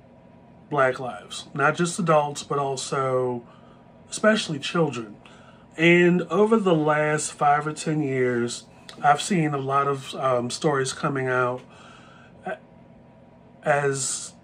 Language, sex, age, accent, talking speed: English, male, 30-49, American, 110 wpm